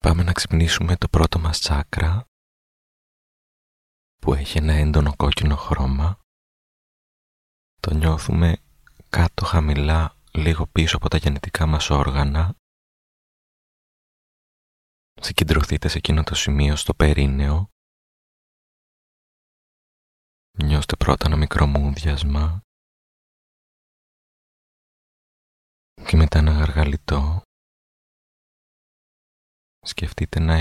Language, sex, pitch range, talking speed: Greek, male, 75-80 Hz, 80 wpm